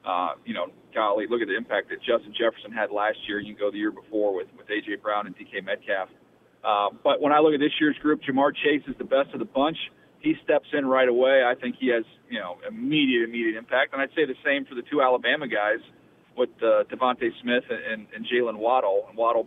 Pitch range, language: 120-155 Hz, English